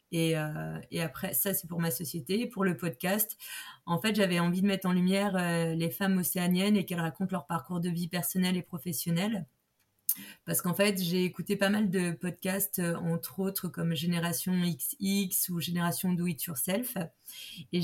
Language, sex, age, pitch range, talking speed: French, female, 20-39, 175-195 Hz, 190 wpm